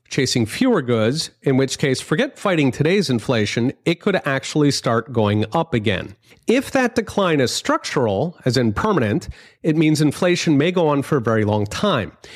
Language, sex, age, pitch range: English, male, 40-59, 120-170 Hz